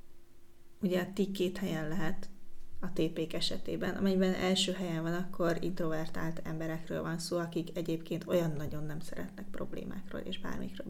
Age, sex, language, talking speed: 30-49, female, Hungarian, 150 wpm